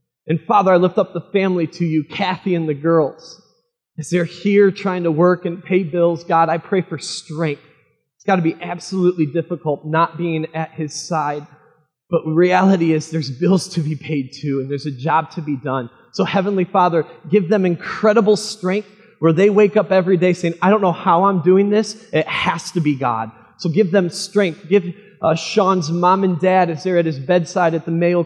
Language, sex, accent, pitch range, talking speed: English, male, American, 160-195 Hz, 210 wpm